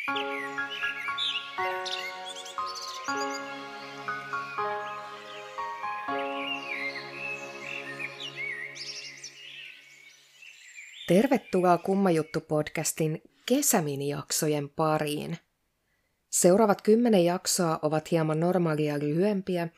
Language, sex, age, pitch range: Finnish, female, 50-69, 150-195 Hz